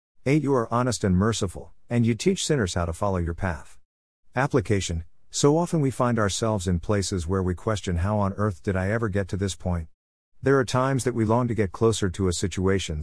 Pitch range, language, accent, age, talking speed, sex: 90-120 Hz, English, American, 50-69, 220 wpm, male